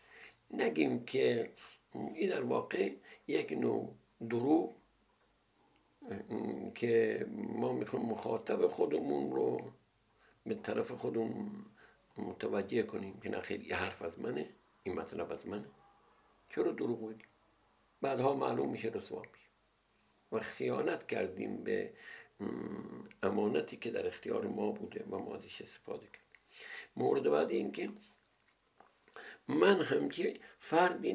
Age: 60-79